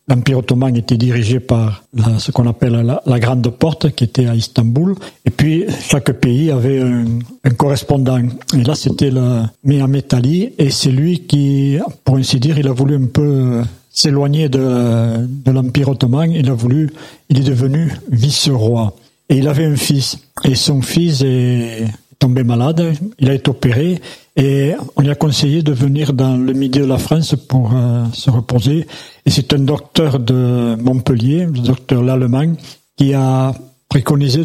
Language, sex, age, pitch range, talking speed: French, male, 60-79, 125-145 Hz, 170 wpm